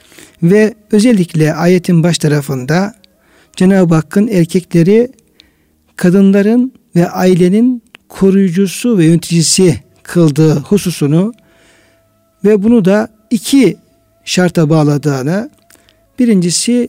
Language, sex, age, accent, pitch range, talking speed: Turkish, male, 60-79, native, 160-205 Hz, 80 wpm